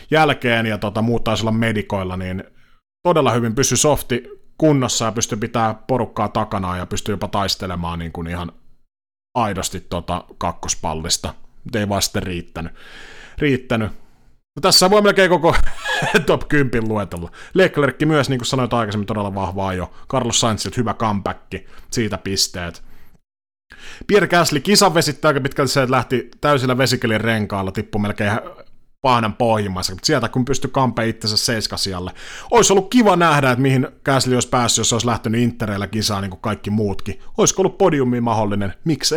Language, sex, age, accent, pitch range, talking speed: Finnish, male, 30-49, native, 100-140 Hz, 150 wpm